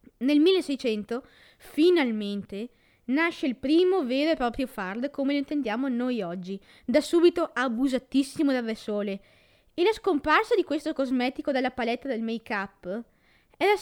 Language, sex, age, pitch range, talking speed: Italian, female, 20-39, 235-315 Hz, 135 wpm